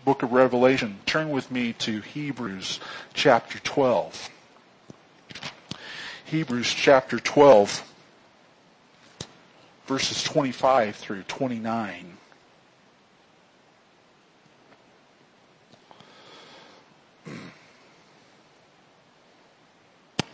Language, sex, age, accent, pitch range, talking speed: English, male, 50-69, American, 125-160 Hz, 45 wpm